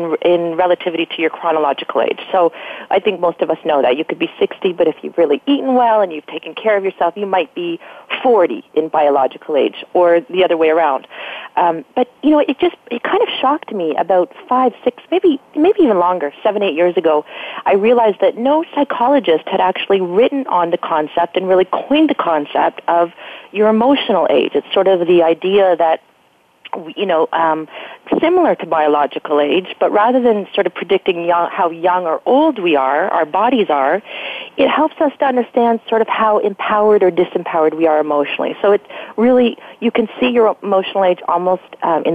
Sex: female